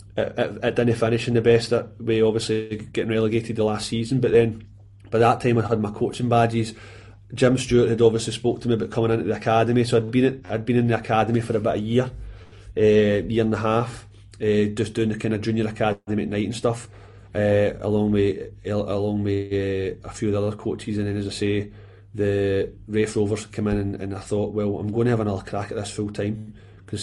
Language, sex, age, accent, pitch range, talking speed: English, male, 30-49, British, 100-115 Hz, 230 wpm